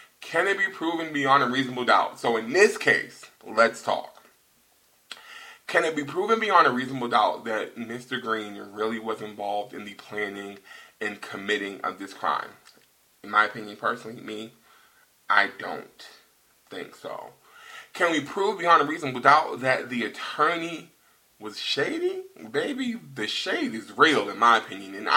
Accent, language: American, English